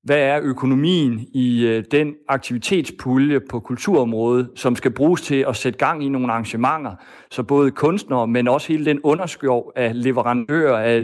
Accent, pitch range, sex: native, 115-140 Hz, male